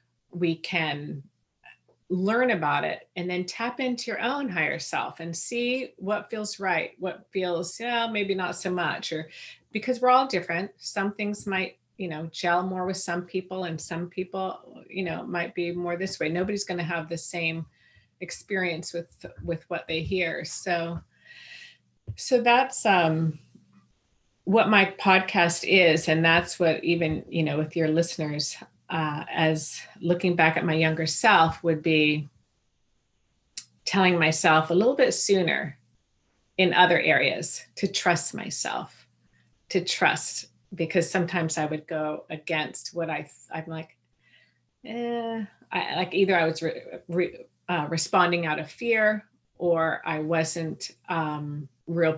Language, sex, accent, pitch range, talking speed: English, female, American, 160-185 Hz, 150 wpm